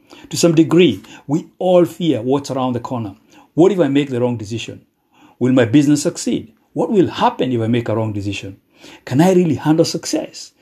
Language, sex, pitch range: English, male, 120-160 Hz